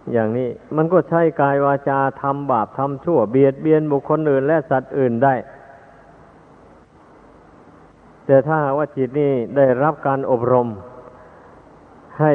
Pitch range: 125-145 Hz